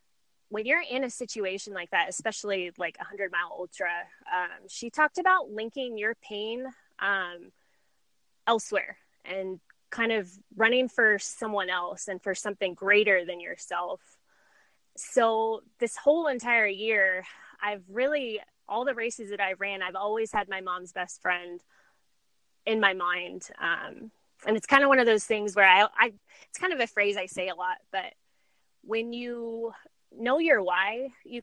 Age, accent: 10-29, American